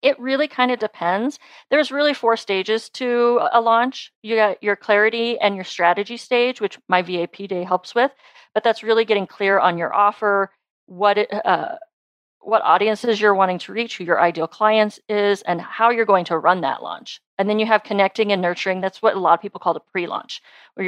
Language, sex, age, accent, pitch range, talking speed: English, female, 40-59, American, 185-235 Hz, 210 wpm